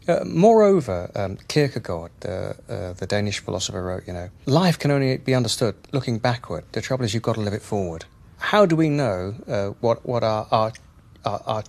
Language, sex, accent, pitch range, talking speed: English, male, British, 105-160 Hz, 200 wpm